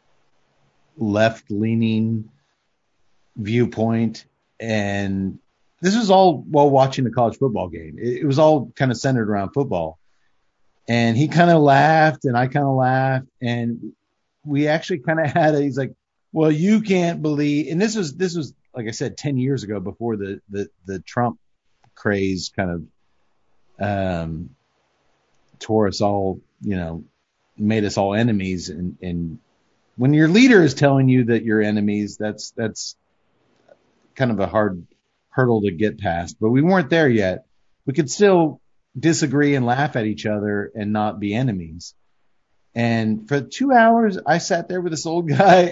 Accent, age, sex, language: American, 40-59, male, English